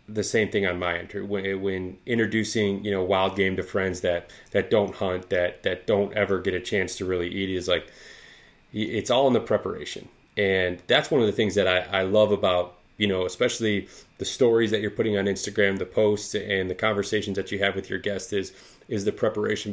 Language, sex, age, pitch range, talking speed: English, male, 30-49, 95-110 Hz, 220 wpm